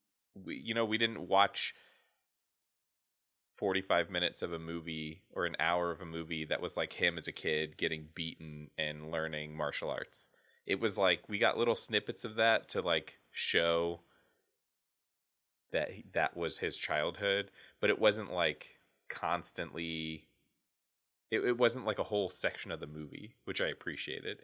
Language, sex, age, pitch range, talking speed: English, male, 20-39, 80-110 Hz, 160 wpm